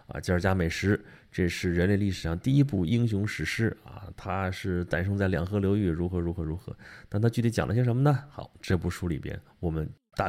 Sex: male